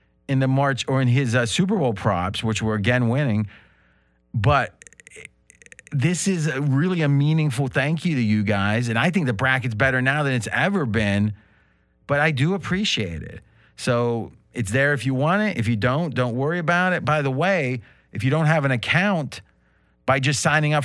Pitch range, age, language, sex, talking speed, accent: 110-150 Hz, 40-59, English, male, 195 wpm, American